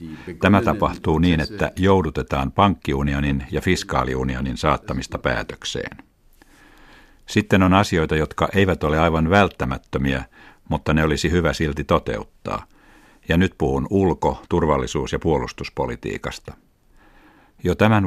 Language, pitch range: Finnish, 70-90 Hz